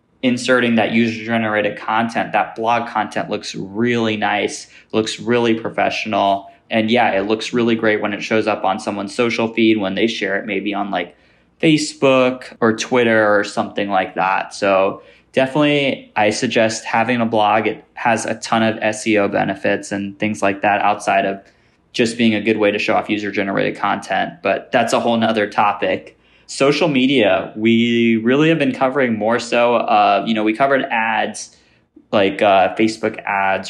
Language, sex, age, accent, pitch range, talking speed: English, male, 20-39, American, 105-120 Hz, 175 wpm